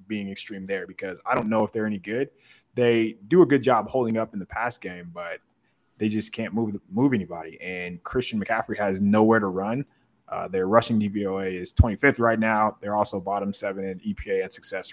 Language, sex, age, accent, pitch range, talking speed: English, male, 20-39, American, 105-140 Hz, 210 wpm